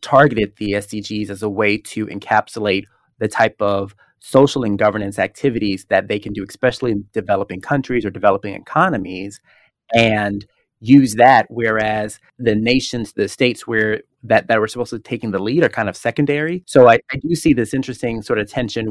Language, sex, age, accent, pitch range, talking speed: English, male, 30-49, American, 105-125 Hz, 185 wpm